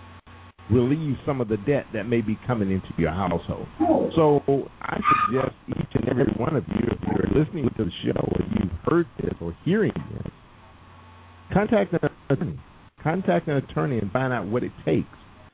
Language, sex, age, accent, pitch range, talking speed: English, male, 50-69, American, 95-145 Hz, 180 wpm